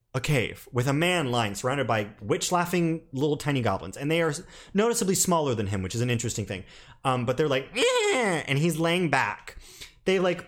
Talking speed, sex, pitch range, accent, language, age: 200 wpm, male, 125-180 Hz, American, English, 30-49